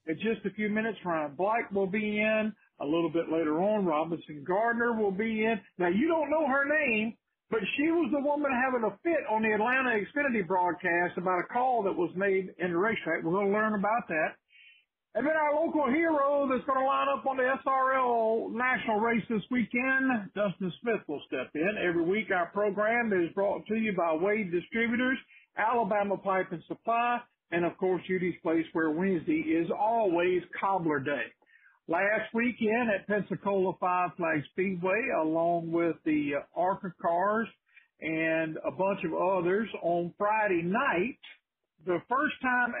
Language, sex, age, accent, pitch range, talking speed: English, male, 50-69, American, 180-240 Hz, 175 wpm